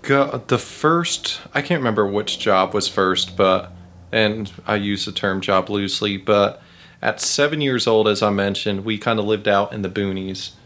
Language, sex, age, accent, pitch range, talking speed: English, male, 30-49, American, 95-115 Hz, 190 wpm